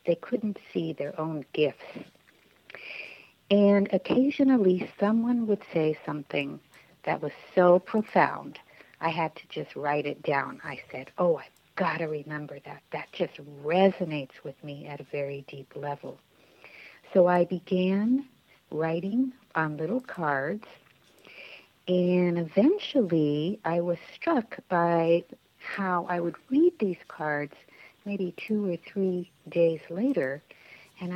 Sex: female